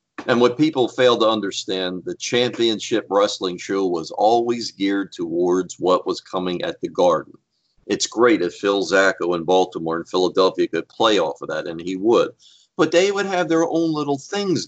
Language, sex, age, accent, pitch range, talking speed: English, male, 50-69, American, 100-165 Hz, 185 wpm